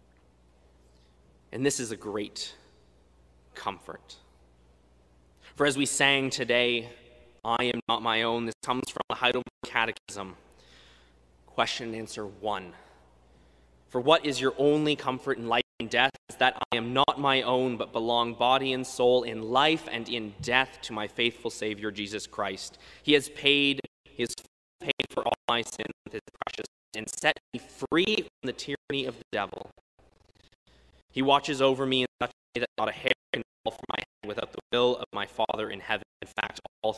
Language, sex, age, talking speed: English, male, 20-39, 180 wpm